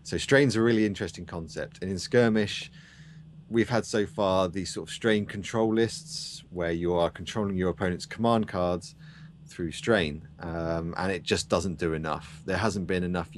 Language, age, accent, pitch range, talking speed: English, 30-49, British, 85-130 Hz, 180 wpm